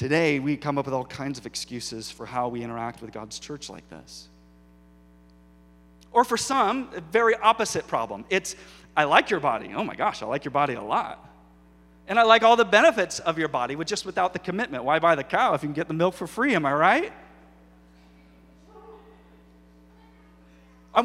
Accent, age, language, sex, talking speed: American, 40-59, English, male, 195 wpm